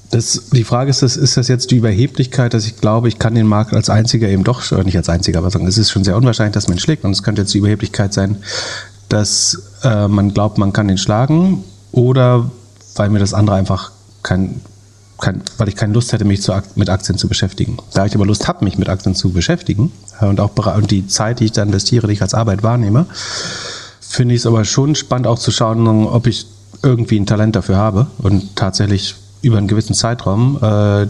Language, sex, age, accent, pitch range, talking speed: German, male, 40-59, German, 100-120 Hz, 220 wpm